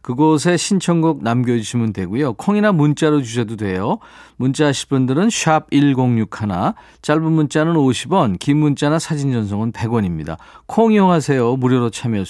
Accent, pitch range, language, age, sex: native, 110-155 Hz, Korean, 40-59, male